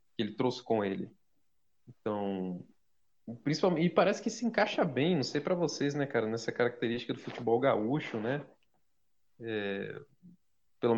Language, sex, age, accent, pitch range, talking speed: Portuguese, male, 20-39, Brazilian, 115-160 Hz, 150 wpm